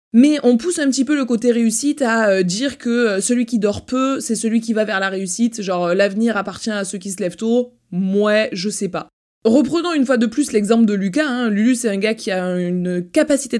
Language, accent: French, French